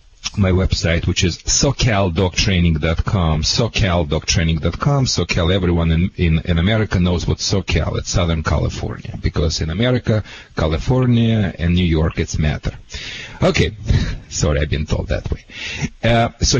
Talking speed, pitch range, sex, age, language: 130 wpm, 90-110 Hz, male, 40-59, English